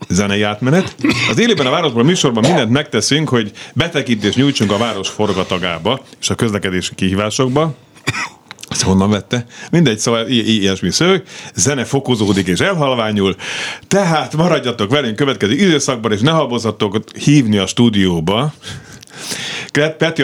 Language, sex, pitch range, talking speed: Hungarian, male, 105-145 Hz, 130 wpm